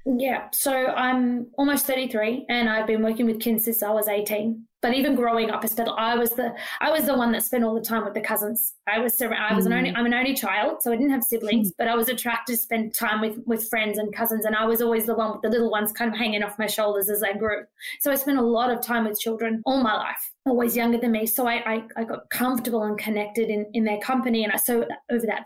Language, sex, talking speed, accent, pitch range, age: English, female, 270 wpm, Australian, 220-245 Hz, 20-39